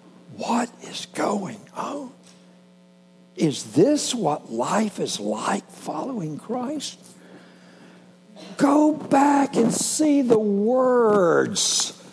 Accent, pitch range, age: American, 165-265 Hz, 60-79